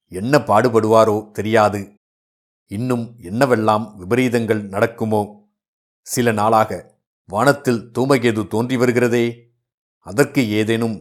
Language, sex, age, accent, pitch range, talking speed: Tamil, male, 50-69, native, 105-130 Hz, 75 wpm